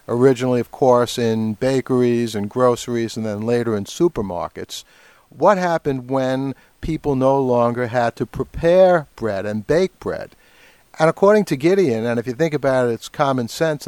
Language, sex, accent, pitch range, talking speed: English, male, American, 120-145 Hz, 165 wpm